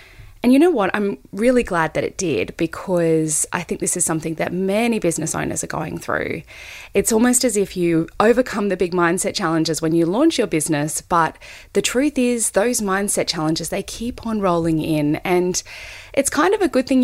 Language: English